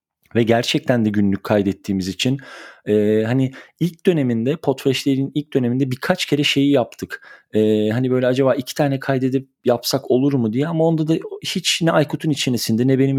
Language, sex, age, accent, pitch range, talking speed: Turkish, male, 40-59, native, 110-140 Hz, 170 wpm